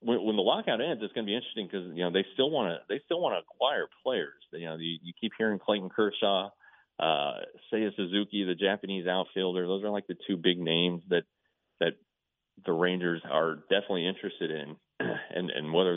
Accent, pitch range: American, 85-100 Hz